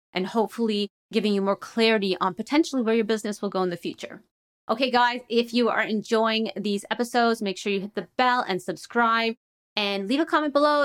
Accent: American